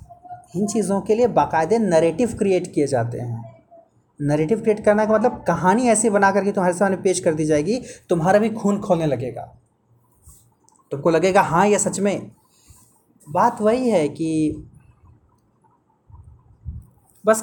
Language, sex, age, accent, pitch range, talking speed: Hindi, male, 30-49, native, 165-225 Hz, 140 wpm